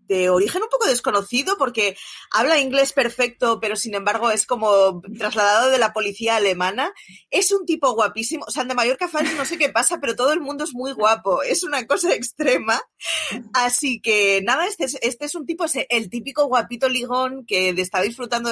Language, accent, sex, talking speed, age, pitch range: Spanish, Spanish, female, 195 wpm, 20-39, 205-265 Hz